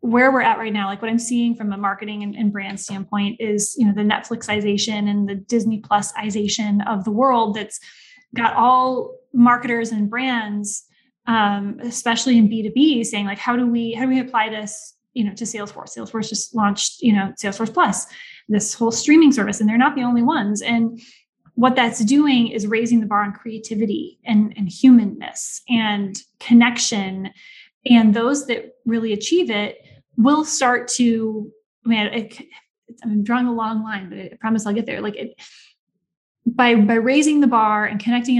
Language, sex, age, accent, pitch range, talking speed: English, female, 10-29, American, 205-240 Hz, 180 wpm